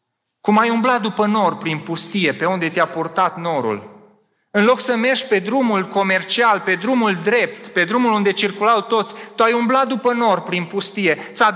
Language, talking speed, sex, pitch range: Romanian, 180 wpm, male, 180-240 Hz